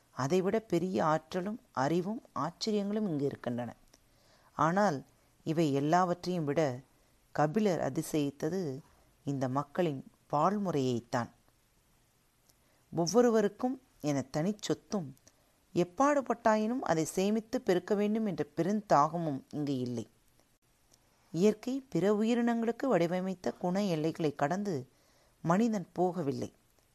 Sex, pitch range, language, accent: female, 145-205 Hz, Tamil, native